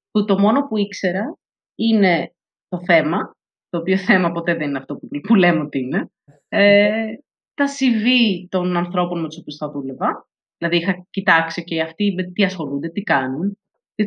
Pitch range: 170-230 Hz